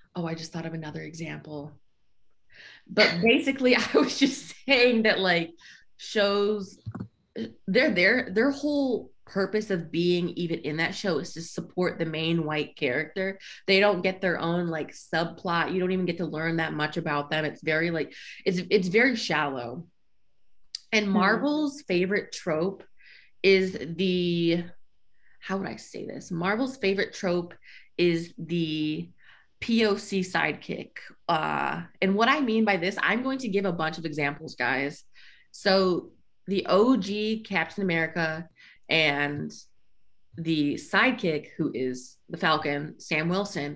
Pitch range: 160-195 Hz